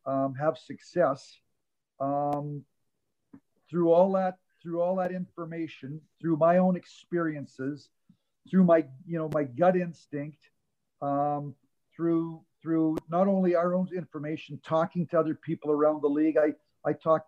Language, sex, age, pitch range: English, male, 50-69, 140-160 Hz